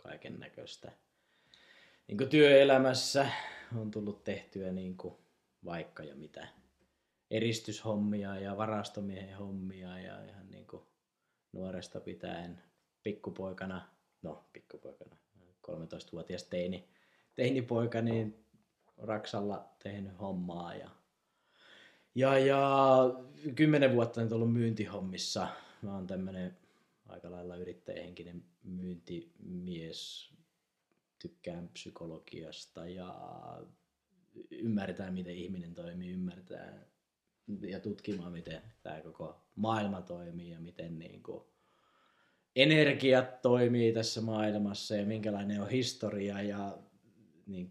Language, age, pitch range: English, 20-39, 90-115 Hz